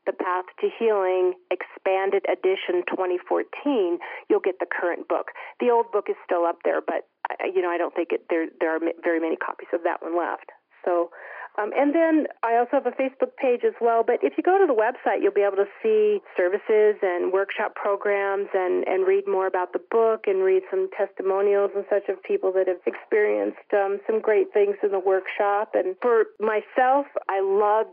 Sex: female